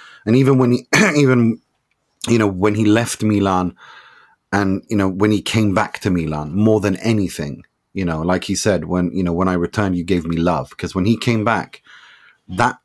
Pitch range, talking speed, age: 85-105 Hz, 205 wpm, 30-49